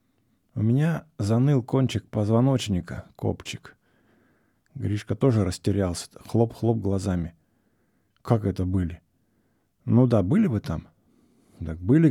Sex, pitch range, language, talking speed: male, 95-120 Hz, English, 105 wpm